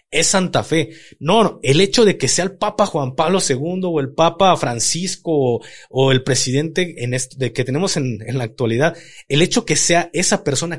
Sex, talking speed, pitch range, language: male, 210 wpm, 125-175 Hz, Spanish